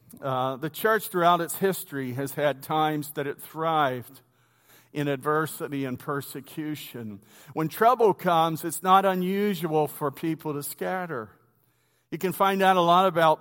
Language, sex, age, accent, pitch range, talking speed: English, male, 50-69, American, 145-180 Hz, 150 wpm